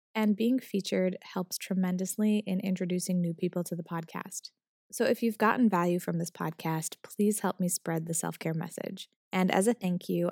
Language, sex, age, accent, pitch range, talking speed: English, female, 20-39, American, 175-205 Hz, 185 wpm